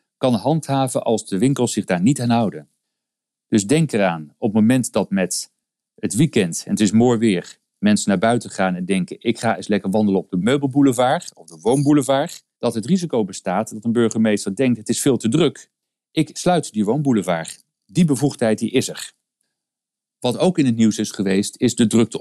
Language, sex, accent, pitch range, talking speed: Dutch, male, Dutch, 100-140 Hz, 195 wpm